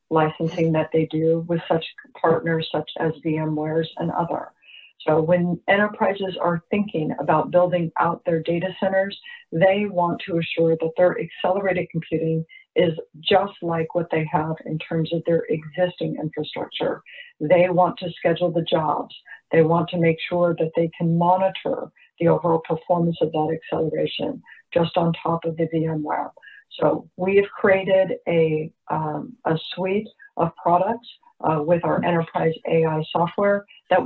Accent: American